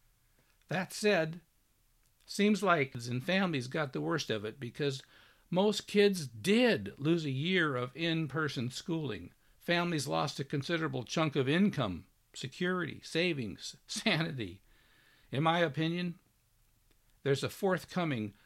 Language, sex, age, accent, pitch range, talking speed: English, male, 60-79, American, 140-210 Hz, 125 wpm